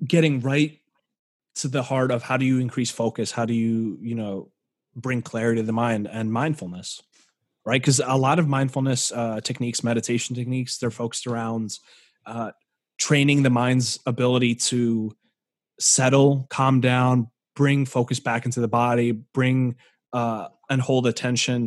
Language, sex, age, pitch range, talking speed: English, male, 20-39, 115-135 Hz, 155 wpm